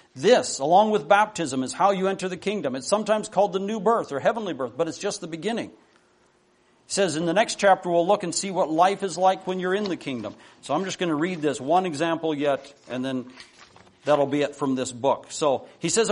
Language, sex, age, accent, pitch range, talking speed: English, male, 50-69, American, 155-210 Hz, 240 wpm